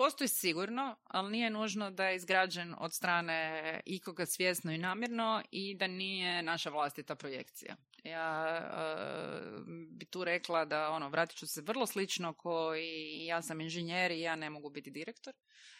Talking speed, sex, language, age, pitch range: 150 wpm, female, Croatian, 30-49, 160-215 Hz